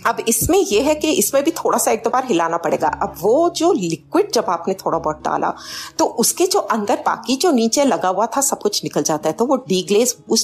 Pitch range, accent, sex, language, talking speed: 170-255 Hz, native, female, Hindi, 240 wpm